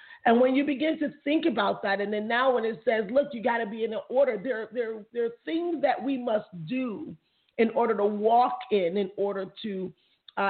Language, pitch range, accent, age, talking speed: English, 205-275 Hz, American, 40-59, 235 wpm